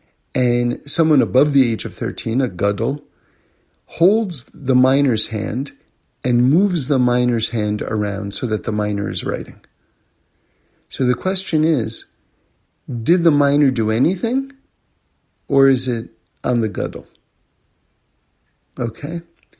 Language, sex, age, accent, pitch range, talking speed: English, male, 50-69, American, 115-145 Hz, 125 wpm